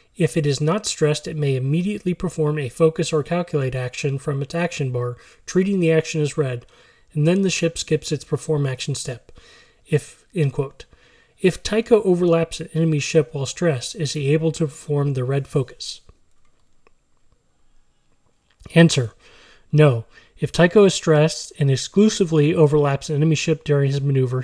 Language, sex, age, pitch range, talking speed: English, male, 30-49, 140-165 Hz, 160 wpm